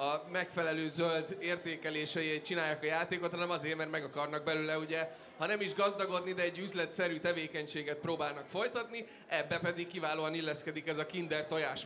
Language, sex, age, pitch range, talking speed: Hungarian, male, 20-39, 155-180 Hz, 160 wpm